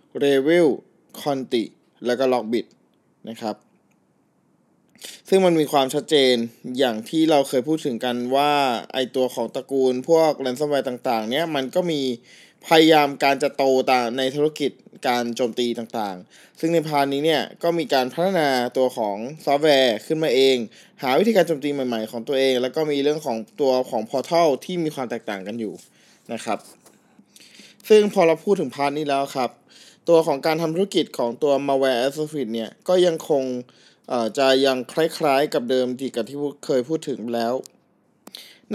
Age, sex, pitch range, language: 20-39, male, 125-160 Hz, Thai